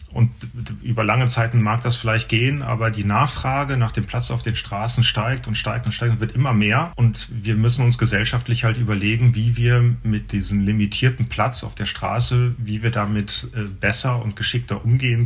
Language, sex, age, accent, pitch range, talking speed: German, male, 40-59, German, 100-120 Hz, 195 wpm